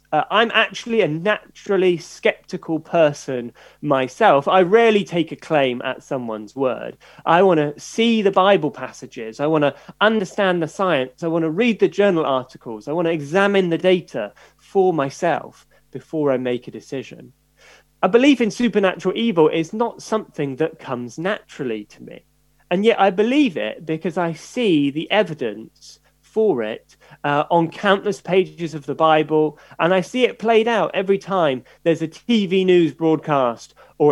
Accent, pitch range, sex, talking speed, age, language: British, 145-200 Hz, male, 165 wpm, 30-49, English